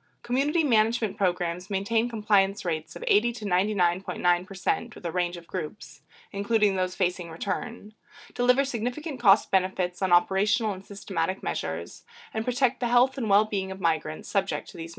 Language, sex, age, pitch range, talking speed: English, female, 20-39, 180-225 Hz, 155 wpm